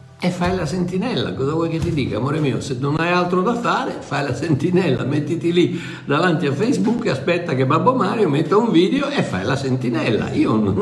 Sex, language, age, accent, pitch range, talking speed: male, Italian, 60-79, native, 130-175 Hz, 215 wpm